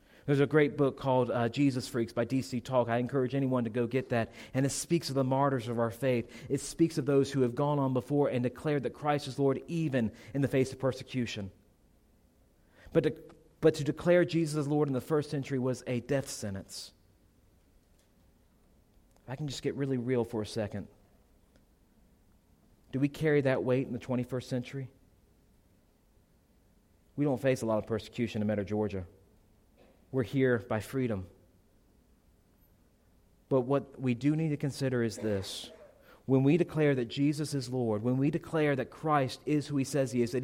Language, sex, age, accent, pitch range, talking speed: English, male, 40-59, American, 110-145 Hz, 185 wpm